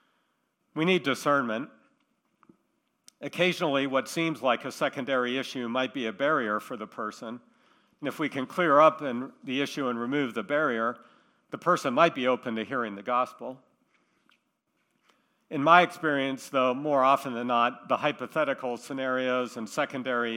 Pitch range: 125-150 Hz